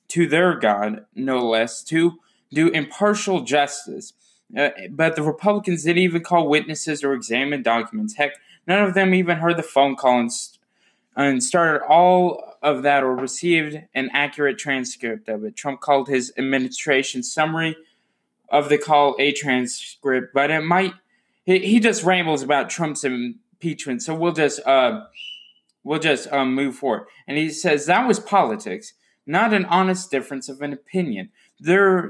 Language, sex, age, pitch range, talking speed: English, male, 20-39, 140-190 Hz, 160 wpm